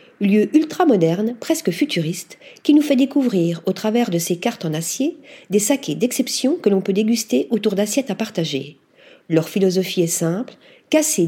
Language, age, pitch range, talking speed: French, 50-69, 190-260 Hz, 165 wpm